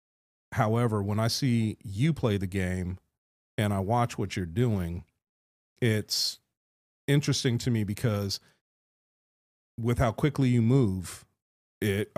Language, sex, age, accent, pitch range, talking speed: English, male, 40-59, American, 95-125 Hz, 125 wpm